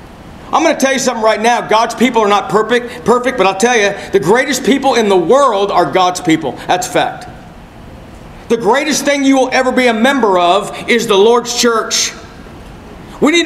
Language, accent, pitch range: English, American, 170-245 Hz